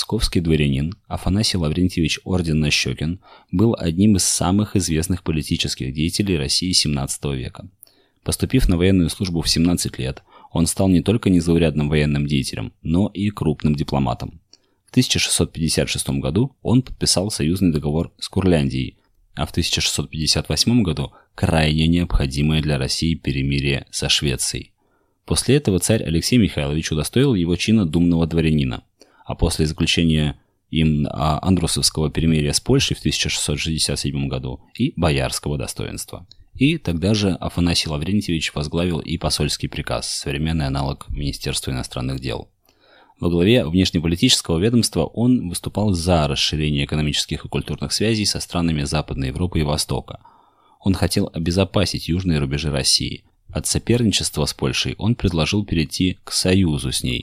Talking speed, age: 130 wpm, 20-39